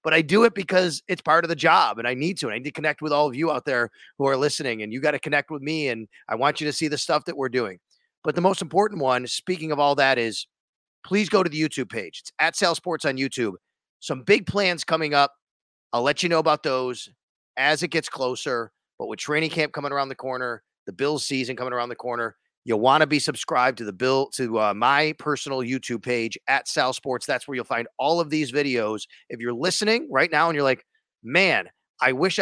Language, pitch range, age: English, 130-160 Hz, 30-49